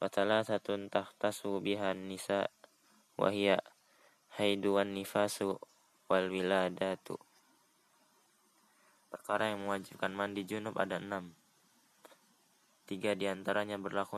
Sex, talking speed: male, 70 wpm